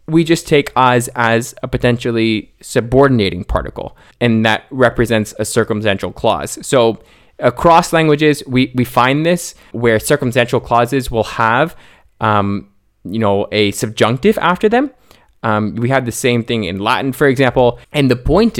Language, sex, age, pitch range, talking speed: English, male, 20-39, 110-140 Hz, 150 wpm